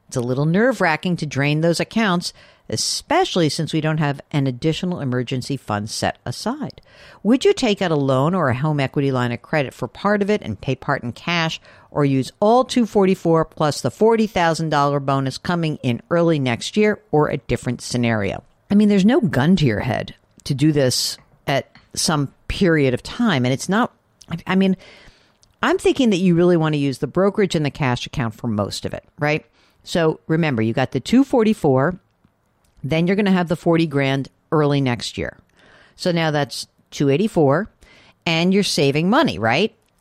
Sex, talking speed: female, 195 wpm